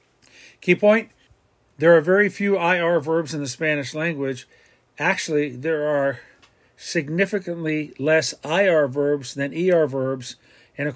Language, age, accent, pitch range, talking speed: English, 50-69, American, 140-170 Hz, 130 wpm